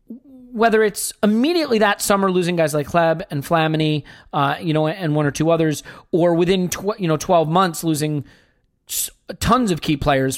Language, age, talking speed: English, 40-59, 185 wpm